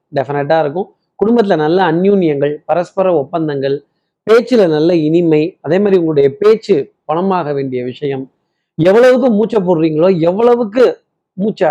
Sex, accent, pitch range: male, native, 150-200 Hz